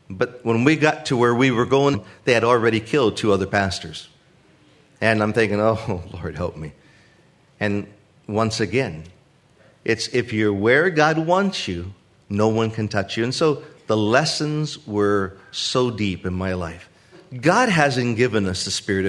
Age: 40-59